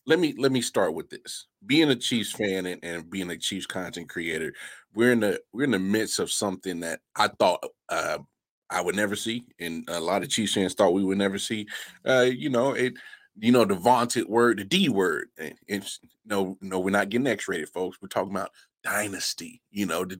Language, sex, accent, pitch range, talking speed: English, male, American, 90-115 Hz, 220 wpm